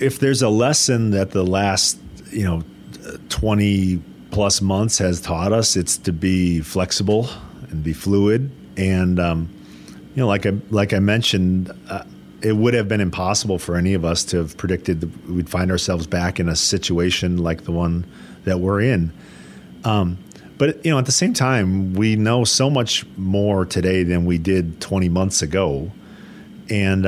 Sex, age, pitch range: male, 40-59, 85-100 Hz